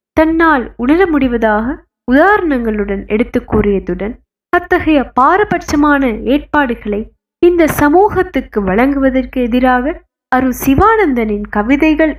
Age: 20-39